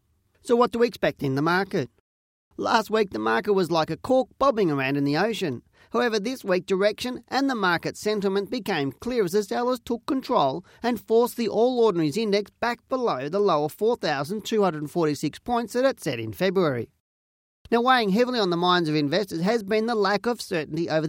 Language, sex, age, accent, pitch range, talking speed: English, male, 40-59, Australian, 155-230 Hz, 195 wpm